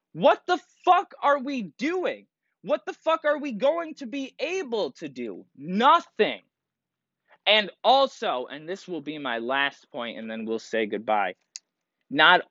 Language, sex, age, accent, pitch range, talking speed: English, male, 20-39, American, 175-270 Hz, 160 wpm